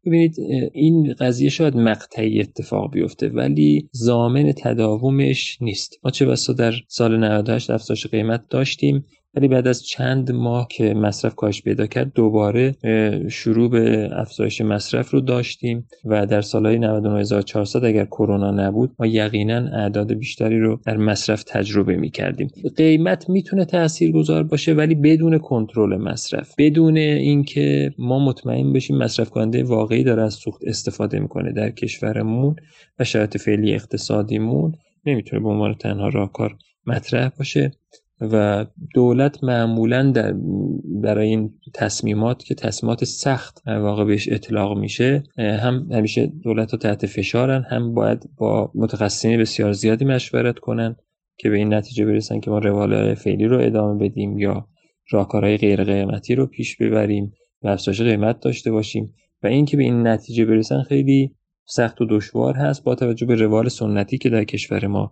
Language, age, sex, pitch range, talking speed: Persian, 30-49, male, 105-130 Hz, 150 wpm